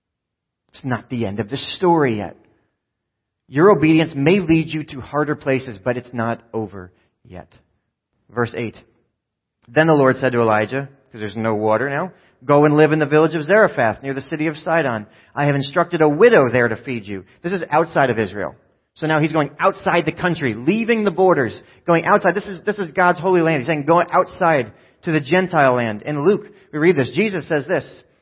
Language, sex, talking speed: English, male, 205 wpm